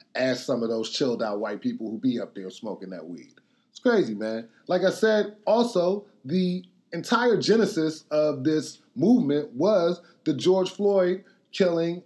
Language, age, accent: English, 30-49, American